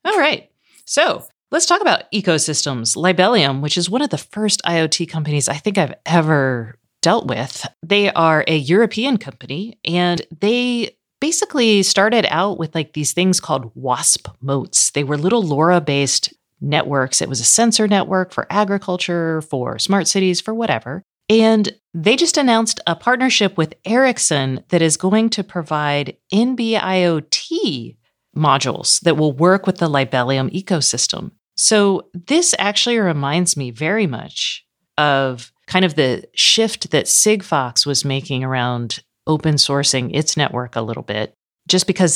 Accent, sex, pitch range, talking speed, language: American, female, 140-195 Hz, 150 wpm, English